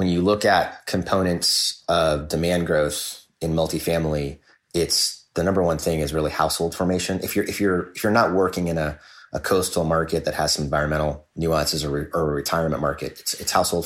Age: 30-49